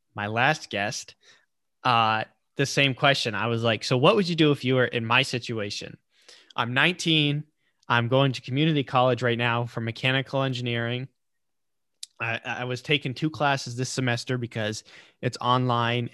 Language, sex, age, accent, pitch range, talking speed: English, male, 20-39, American, 115-135 Hz, 165 wpm